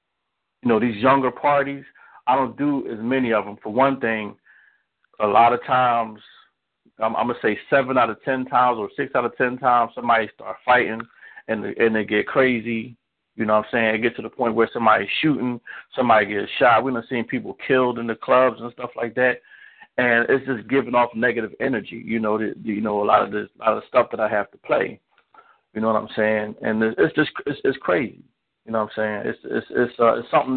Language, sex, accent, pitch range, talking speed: English, male, American, 110-130 Hz, 235 wpm